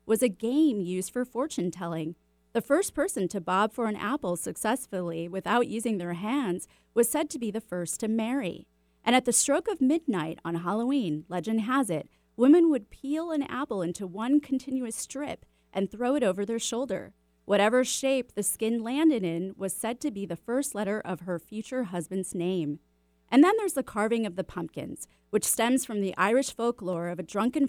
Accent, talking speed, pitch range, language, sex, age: American, 190 wpm, 175-255 Hz, English, female, 30-49